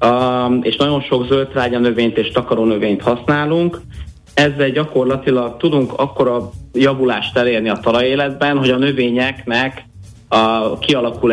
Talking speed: 110 wpm